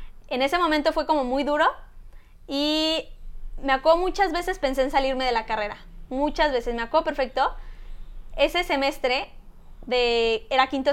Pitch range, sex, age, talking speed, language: 250-315 Hz, female, 20-39, 155 wpm, Spanish